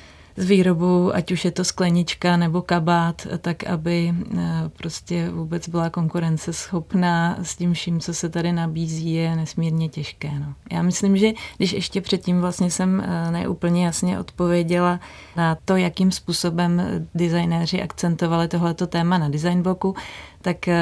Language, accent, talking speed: Czech, native, 140 wpm